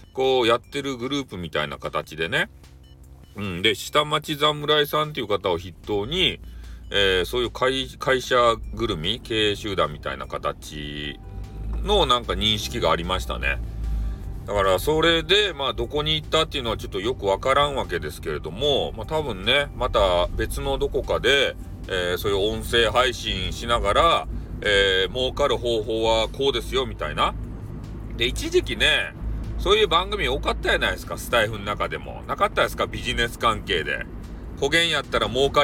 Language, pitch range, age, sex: Japanese, 95-150 Hz, 40-59, male